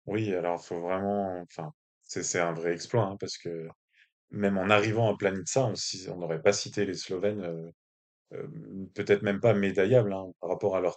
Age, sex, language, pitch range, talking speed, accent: 20-39, male, French, 90-110 Hz, 195 wpm, French